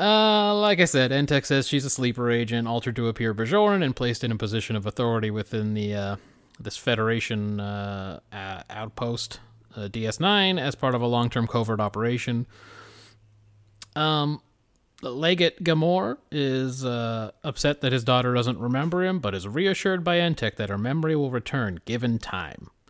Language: English